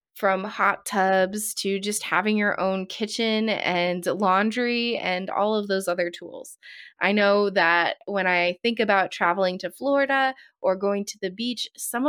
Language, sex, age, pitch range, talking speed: English, female, 20-39, 185-235 Hz, 165 wpm